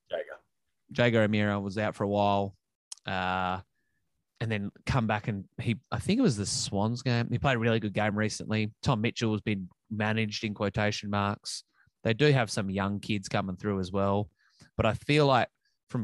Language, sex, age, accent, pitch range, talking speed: English, male, 20-39, Australian, 95-120 Hz, 190 wpm